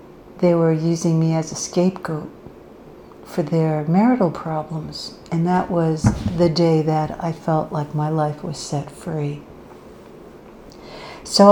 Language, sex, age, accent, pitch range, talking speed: English, female, 60-79, American, 160-185 Hz, 135 wpm